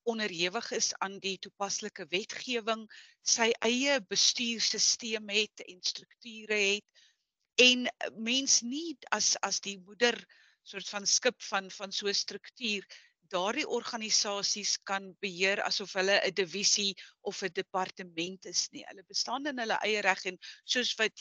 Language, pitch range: English, 190-230 Hz